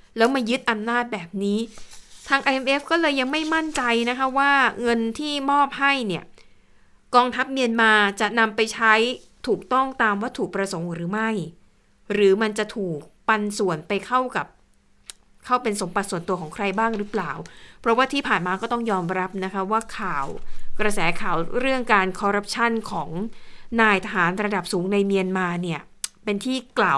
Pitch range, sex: 195-245 Hz, female